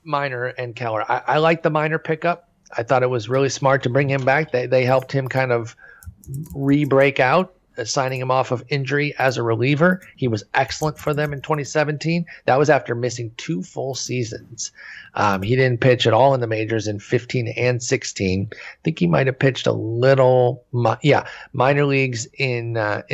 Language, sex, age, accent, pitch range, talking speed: English, male, 40-59, American, 115-150 Hz, 195 wpm